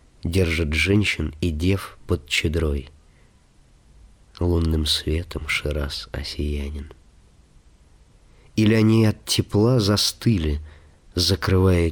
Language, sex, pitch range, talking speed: Russian, male, 75-95 Hz, 80 wpm